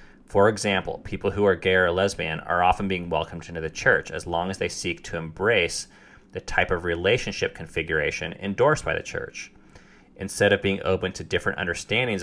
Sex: male